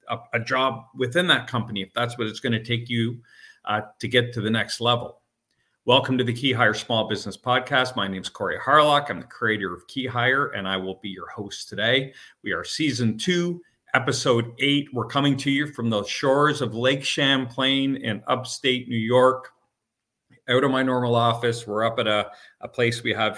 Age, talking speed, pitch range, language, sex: 40-59, 205 wpm, 105-130 Hz, English, male